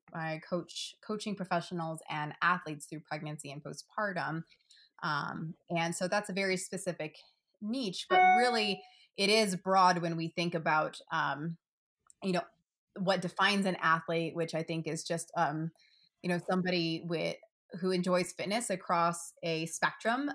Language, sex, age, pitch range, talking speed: English, female, 20-39, 165-190 Hz, 145 wpm